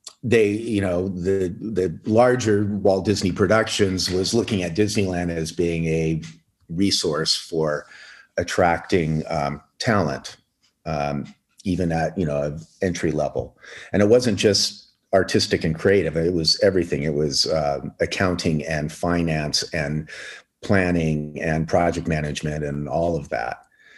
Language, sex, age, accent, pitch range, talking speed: English, male, 50-69, American, 80-105 Hz, 135 wpm